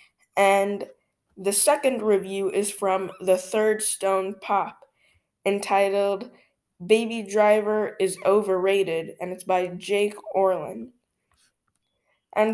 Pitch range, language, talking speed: 190-215 Hz, English, 100 wpm